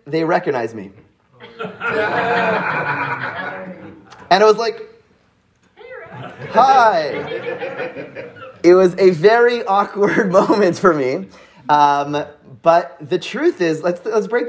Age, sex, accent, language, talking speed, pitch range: 30-49, male, American, English, 100 wpm, 210-295 Hz